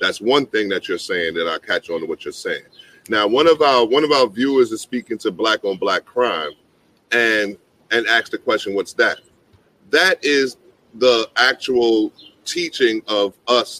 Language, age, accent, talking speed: English, 30-49, American, 185 wpm